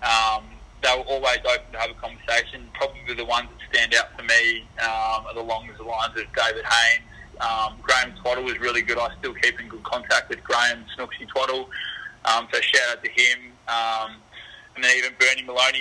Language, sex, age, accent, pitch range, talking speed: English, male, 20-39, Australian, 115-125 Hz, 205 wpm